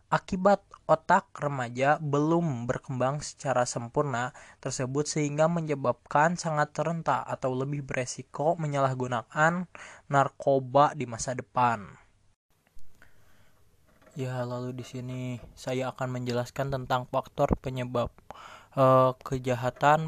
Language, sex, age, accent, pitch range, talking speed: Indonesian, male, 20-39, native, 125-145 Hz, 95 wpm